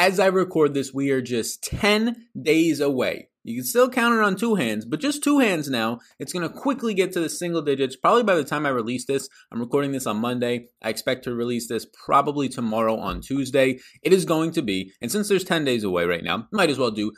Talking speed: 245 wpm